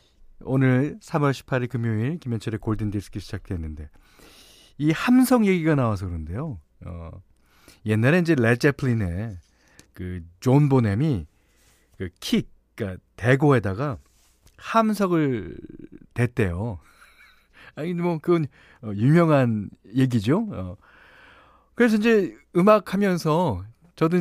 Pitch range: 105-165 Hz